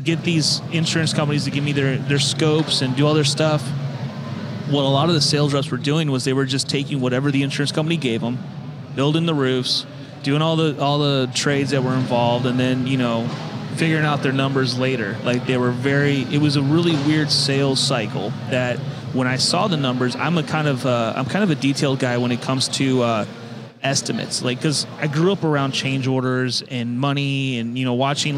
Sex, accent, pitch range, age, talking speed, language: male, American, 120-145 Hz, 30-49, 220 wpm, English